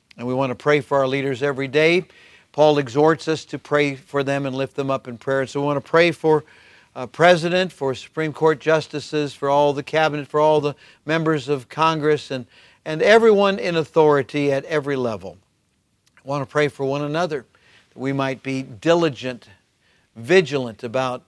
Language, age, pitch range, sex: English, 50-69, 125-150 Hz, male